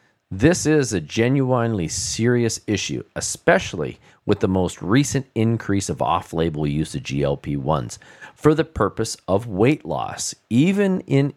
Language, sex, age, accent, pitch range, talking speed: English, male, 40-59, American, 90-125 Hz, 130 wpm